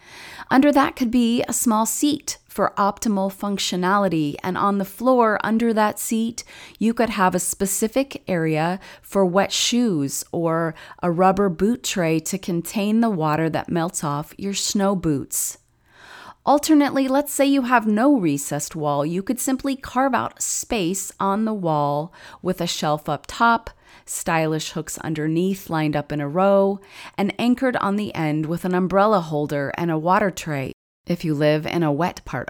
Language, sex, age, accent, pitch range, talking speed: English, female, 30-49, American, 165-220 Hz, 170 wpm